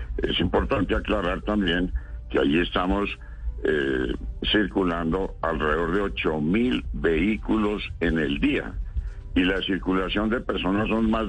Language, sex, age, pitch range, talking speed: Spanish, male, 60-79, 75-105 Hz, 120 wpm